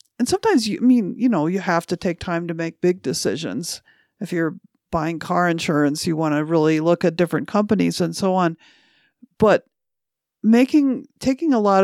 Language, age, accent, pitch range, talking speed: English, 50-69, American, 170-215 Hz, 190 wpm